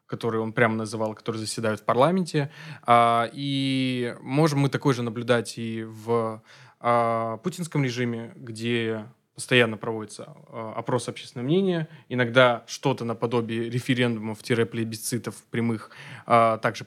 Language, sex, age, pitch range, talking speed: Russian, male, 20-39, 115-135 Hz, 110 wpm